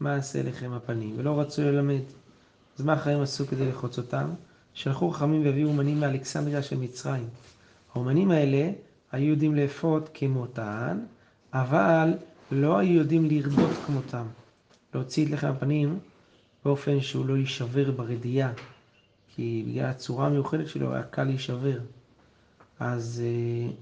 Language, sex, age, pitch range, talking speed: Hebrew, male, 40-59, 120-150 Hz, 130 wpm